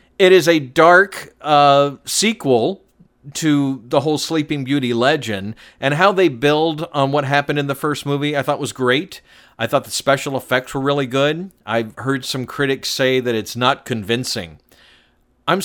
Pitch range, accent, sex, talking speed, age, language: 120-155 Hz, American, male, 175 wpm, 50-69, English